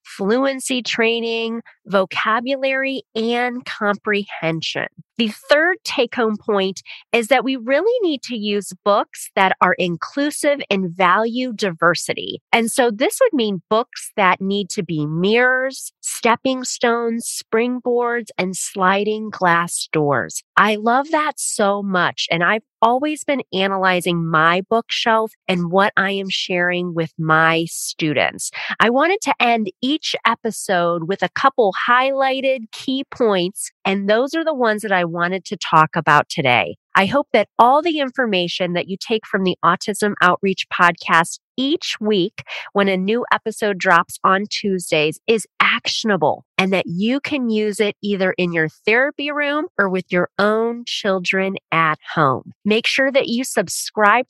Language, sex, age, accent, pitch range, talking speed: English, female, 30-49, American, 185-255 Hz, 145 wpm